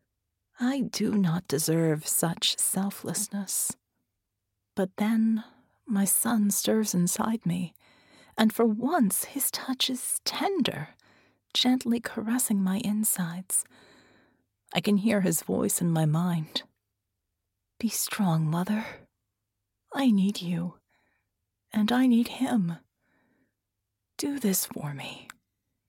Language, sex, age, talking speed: English, female, 30-49, 105 wpm